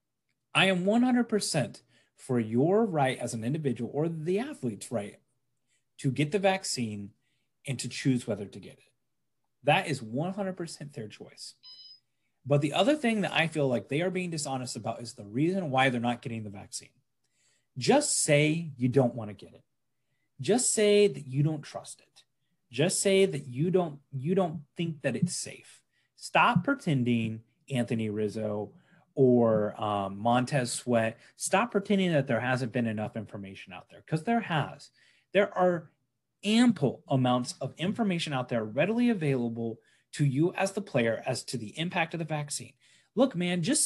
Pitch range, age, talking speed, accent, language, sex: 120-180 Hz, 30-49, 165 wpm, American, English, male